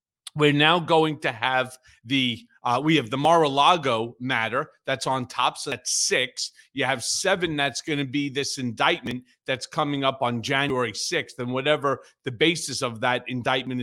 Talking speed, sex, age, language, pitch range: 175 wpm, male, 40-59, English, 140-230 Hz